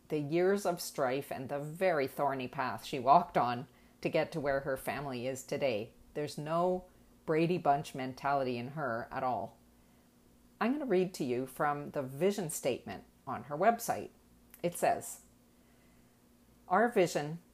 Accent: American